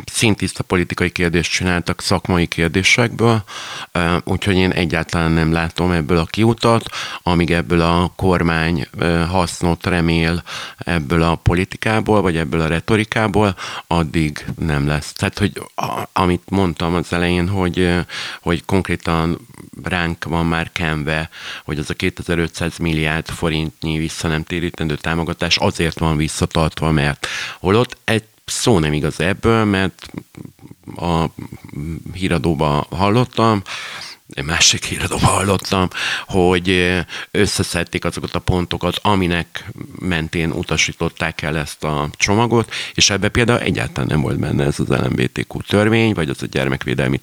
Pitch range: 80-95 Hz